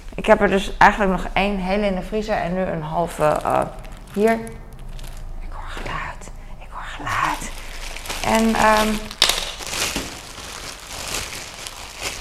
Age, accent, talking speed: 20-39, Dutch, 125 wpm